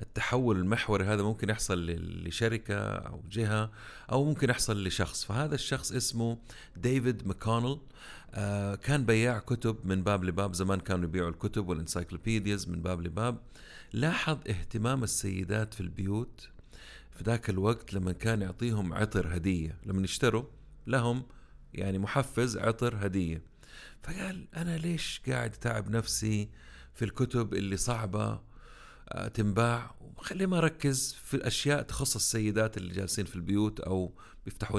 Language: Arabic